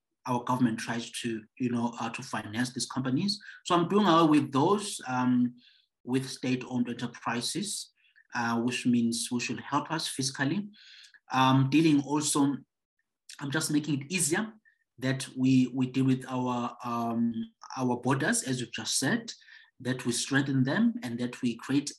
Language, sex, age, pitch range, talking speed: English, male, 30-49, 120-140 Hz, 160 wpm